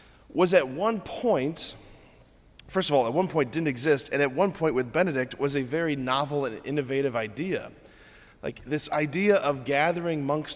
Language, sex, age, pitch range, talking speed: English, male, 20-39, 120-150 Hz, 175 wpm